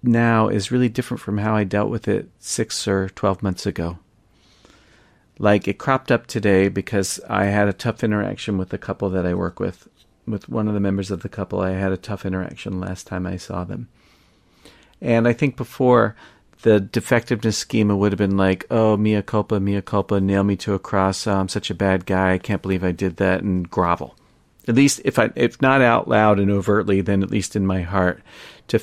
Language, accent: English, American